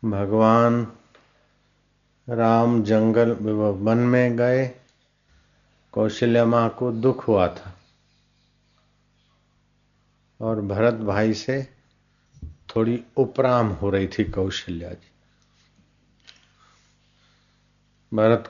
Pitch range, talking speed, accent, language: 100-120 Hz, 80 wpm, native, Hindi